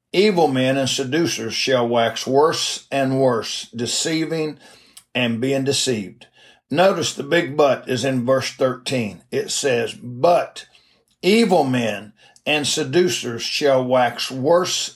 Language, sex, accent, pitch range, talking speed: English, male, American, 130-165 Hz, 125 wpm